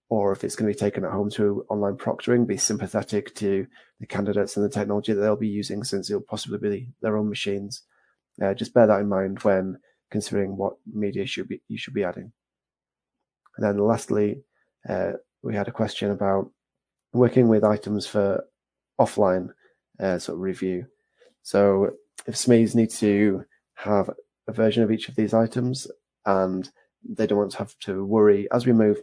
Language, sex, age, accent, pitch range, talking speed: English, male, 30-49, British, 100-110 Hz, 185 wpm